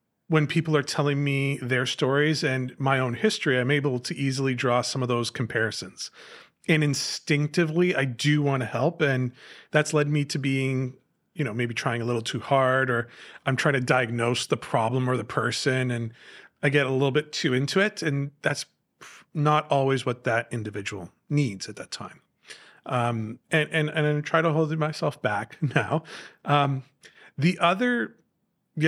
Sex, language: male, English